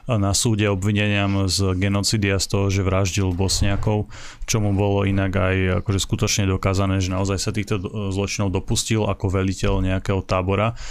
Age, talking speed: 30-49, 155 wpm